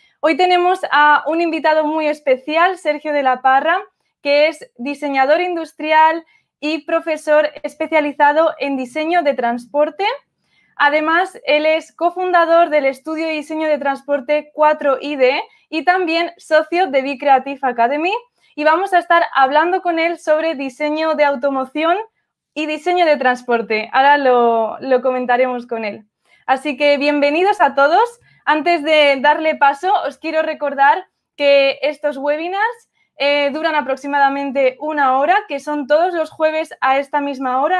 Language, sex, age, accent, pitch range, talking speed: Spanish, female, 20-39, Spanish, 275-325 Hz, 145 wpm